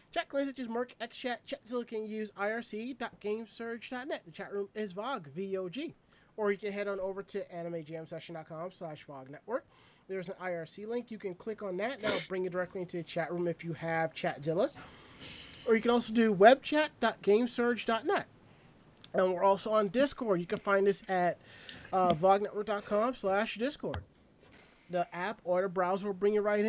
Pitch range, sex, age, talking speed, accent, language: 185-230 Hz, male, 30-49, 170 wpm, American, English